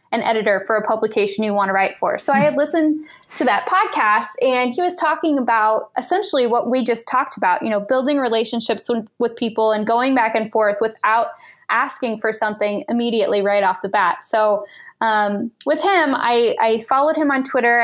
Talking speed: 195 wpm